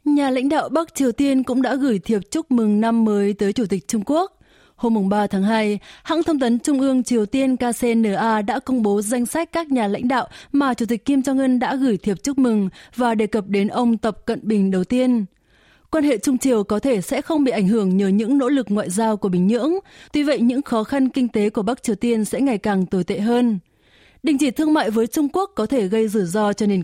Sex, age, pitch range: female, 20-39, 210-265 Hz